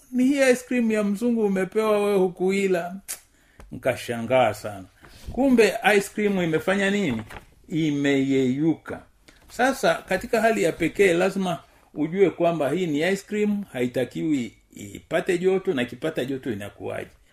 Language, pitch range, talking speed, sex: Swahili, 130-180 Hz, 125 wpm, male